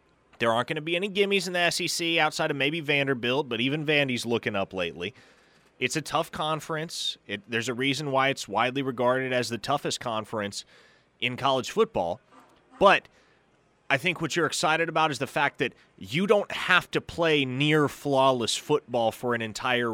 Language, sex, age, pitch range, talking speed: English, male, 30-49, 115-160 Hz, 180 wpm